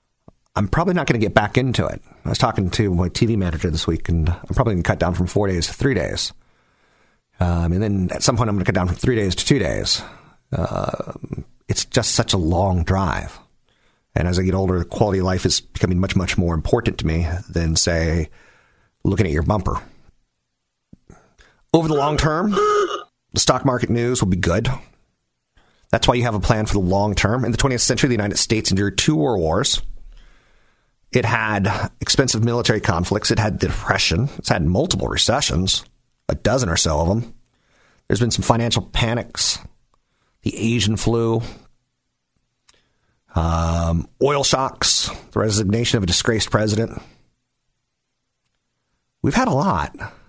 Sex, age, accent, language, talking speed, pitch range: male, 40-59, American, English, 180 wpm, 90-120 Hz